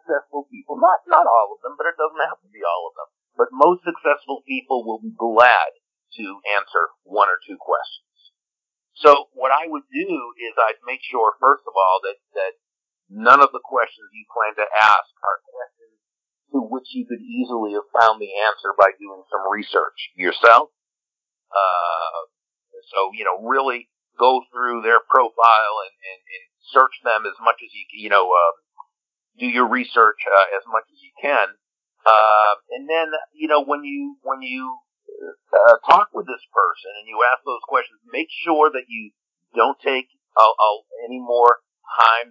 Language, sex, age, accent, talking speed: English, male, 50-69, American, 180 wpm